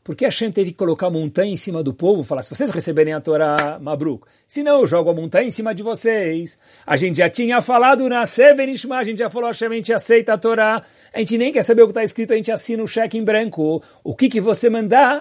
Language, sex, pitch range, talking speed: Portuguese, male, 130-200 Hz, 270 wpm